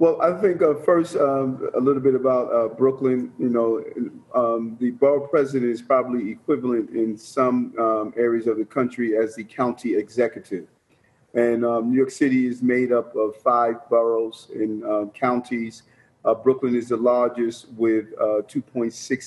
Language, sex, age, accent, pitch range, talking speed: English, male, 40-59, American, 115-130 Hz, 165 wpm